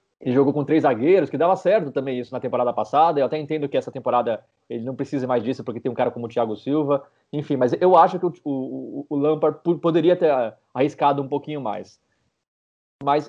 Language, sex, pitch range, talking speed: Portuguese, male, 120-150 Hz, 215 wpm